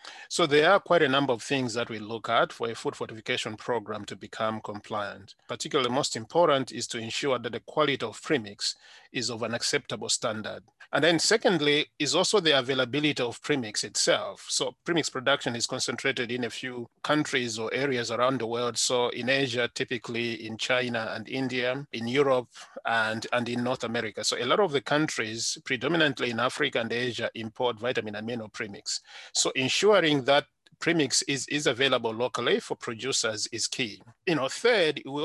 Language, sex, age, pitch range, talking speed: English, male, 30-49, 115-140 Hz, 180 wpm